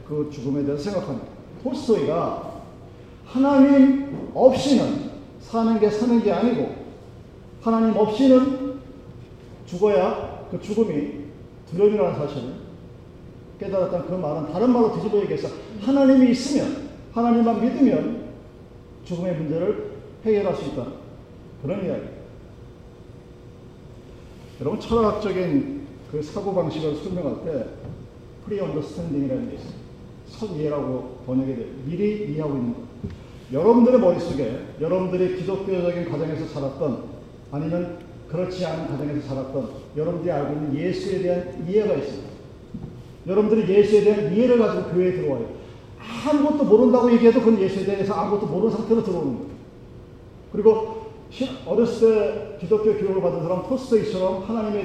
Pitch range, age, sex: 155-225 Hz, 40-59, male